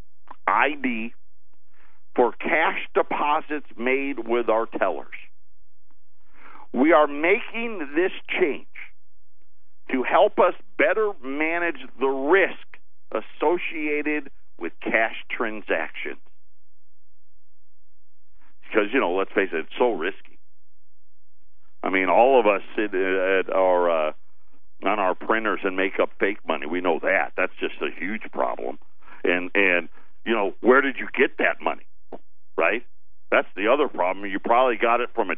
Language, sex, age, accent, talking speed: English, male, 50-69, American, 135 wpm